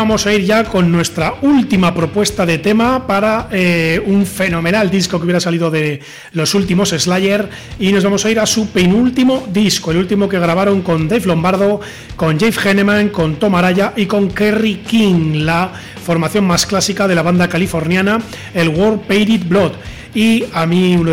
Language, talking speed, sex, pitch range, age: Spanish, 180 wpm, male, 170-210 Hz, 40-59